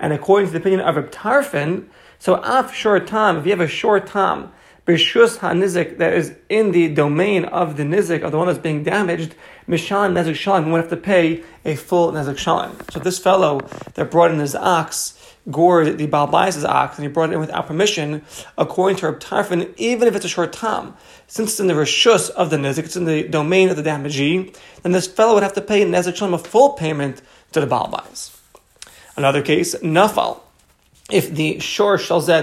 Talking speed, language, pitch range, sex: 200 wpm, English, 155-190 Hz, male